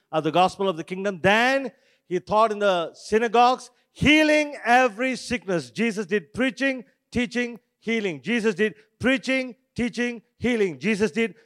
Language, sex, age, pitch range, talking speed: English, male, 50-69, 195-255 Hz, 140 wpm